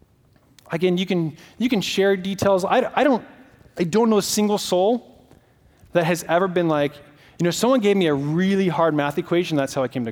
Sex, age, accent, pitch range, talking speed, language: male, 30-49, American, 170-225 Hz, 215 wpm, English